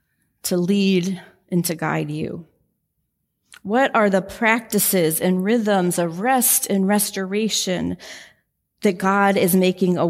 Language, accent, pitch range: English, American, 175-205 Hz